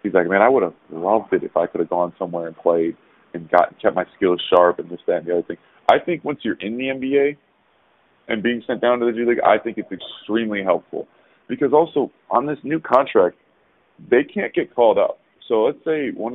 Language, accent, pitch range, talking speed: English, American, 90-120 Hz, 235 wpm